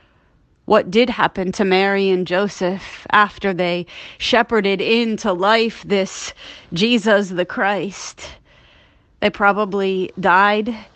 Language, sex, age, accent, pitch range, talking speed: English, female, 30-49, American, 190-225 Hz, 105 wpm